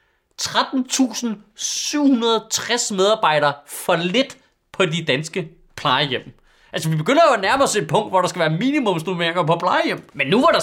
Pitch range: 175-260 Hz